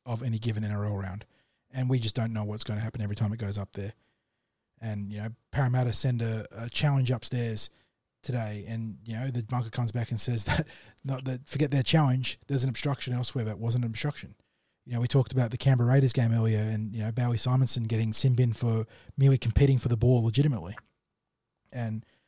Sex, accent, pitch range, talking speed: male, Australian, 110-130 Hz, 210 wpm